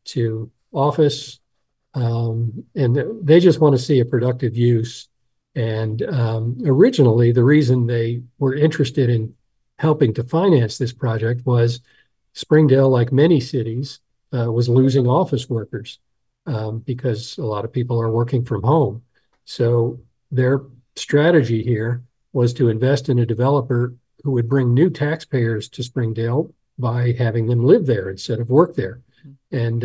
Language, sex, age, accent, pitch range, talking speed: English, male, 50-69, American, 120-135 Hz, 145 wpm